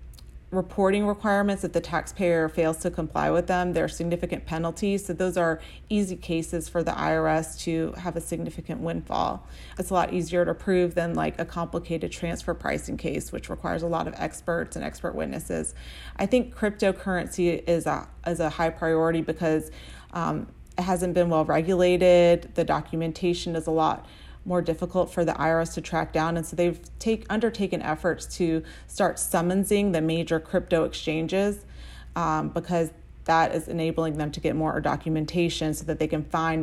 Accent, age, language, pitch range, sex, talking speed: American, 30-49, English, 160-180 Hz, female, 170 wpm